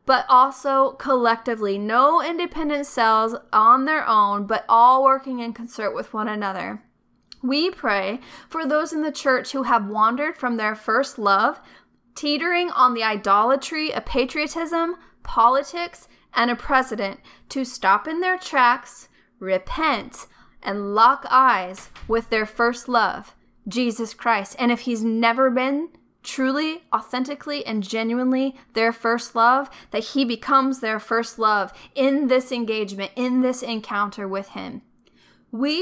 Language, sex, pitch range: English, female, 220-280 Hz